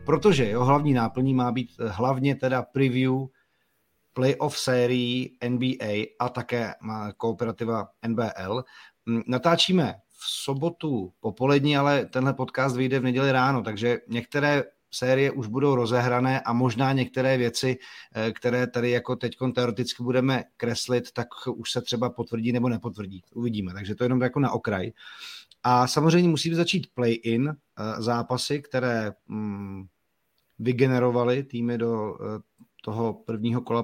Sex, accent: male, native